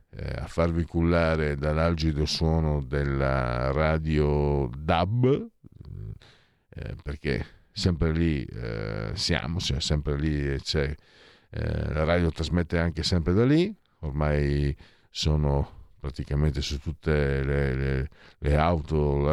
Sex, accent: male, native